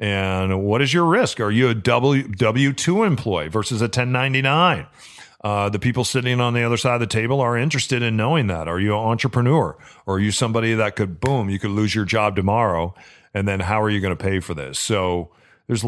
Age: 40-59